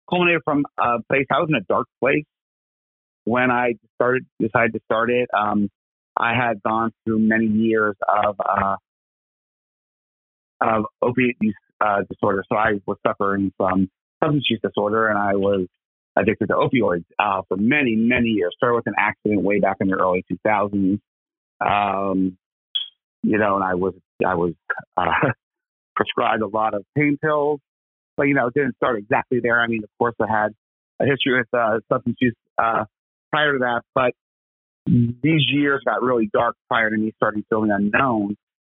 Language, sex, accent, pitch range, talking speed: English, male, American, 100-125 Hz, 170 wpm